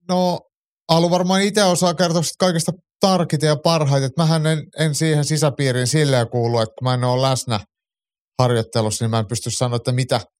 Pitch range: 125-155 Hz